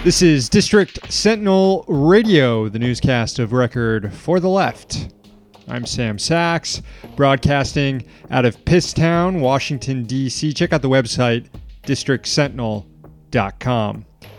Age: 30-49